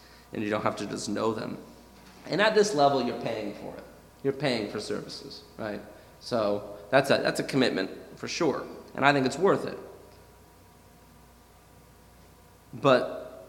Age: 30-49